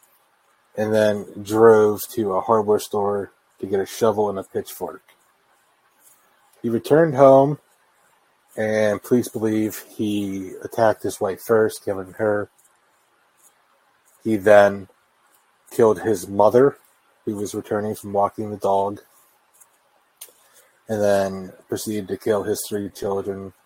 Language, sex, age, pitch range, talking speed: English, male, 30-49, 100-110 Hz, 120 wpm